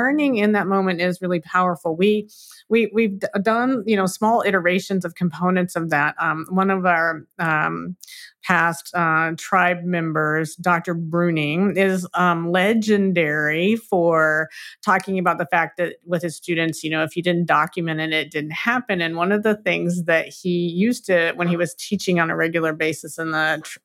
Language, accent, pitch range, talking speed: English, American, 165-200 Hz, 185 wpm